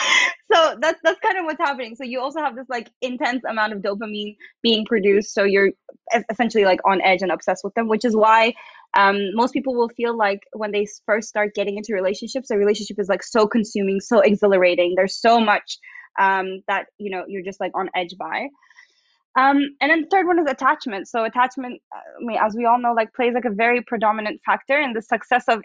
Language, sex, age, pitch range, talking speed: English, female, 10-29, 195-240 Hz, 220 wpm